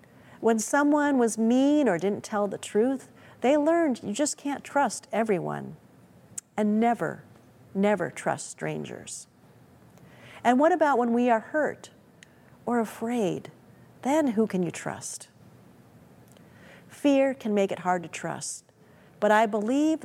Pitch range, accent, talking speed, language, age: 195-275 Hz, American, 135 wpm, English, 40-59